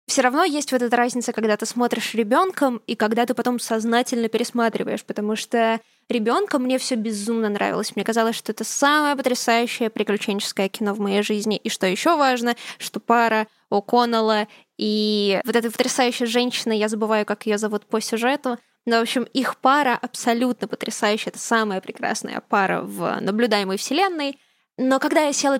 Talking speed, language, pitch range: 165 wpm, Russian, 220-260 Hz